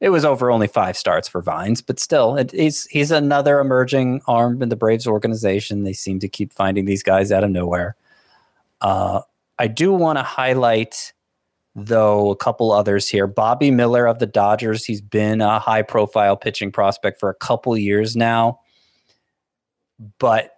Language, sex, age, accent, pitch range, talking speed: English, male, 30-49, American, 100-120 Hz, 165 wpm